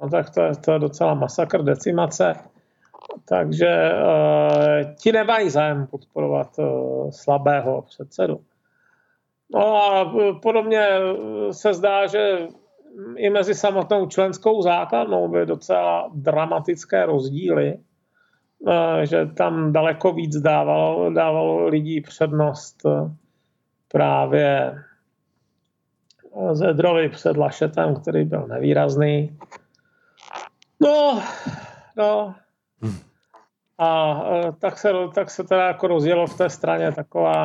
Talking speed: 100 wpm